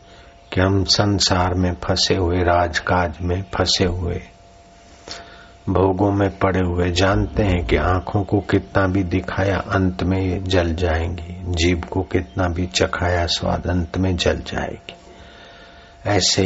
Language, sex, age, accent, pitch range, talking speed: Hindi, male, 60-79, native, 85-95 Hz, 135 wpm